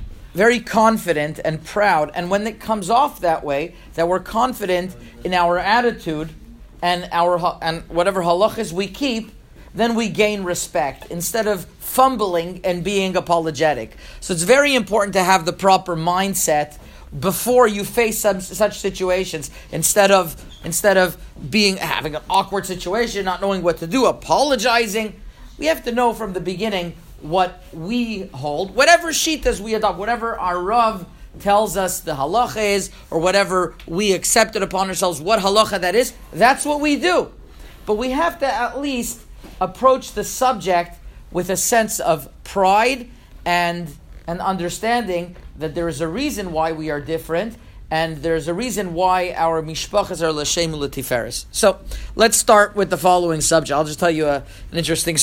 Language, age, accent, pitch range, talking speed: English, 40-59, American, 165-215 Hz, 165 wpm